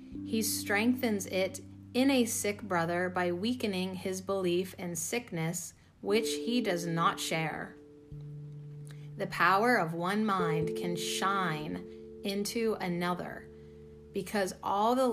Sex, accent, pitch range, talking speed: female, American, 145-195 Hz, 120 wpm